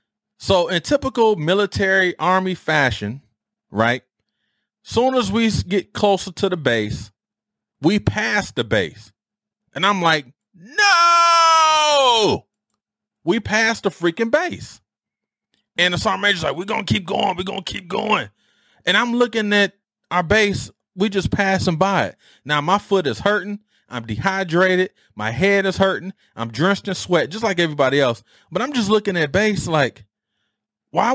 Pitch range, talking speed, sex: 140-210 Hz, 155 wpm, male